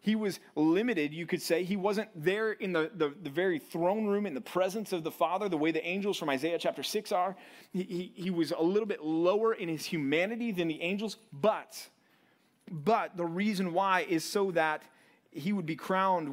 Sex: male